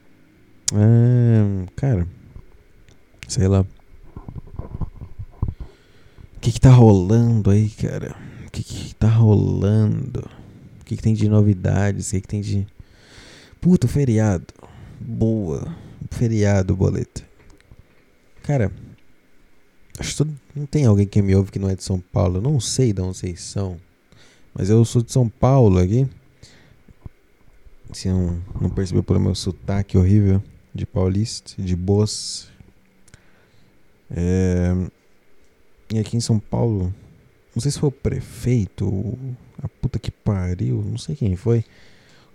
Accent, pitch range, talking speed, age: Brazilian, 95-115 Hz, 130 wpm, 20-39